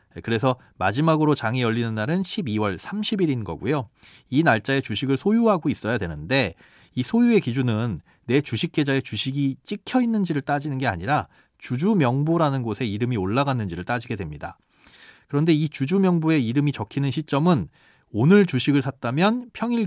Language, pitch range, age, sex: Korean, 110-160 Hz, 40-59, male